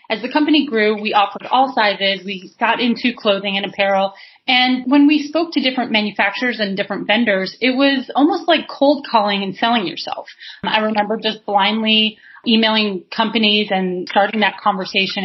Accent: American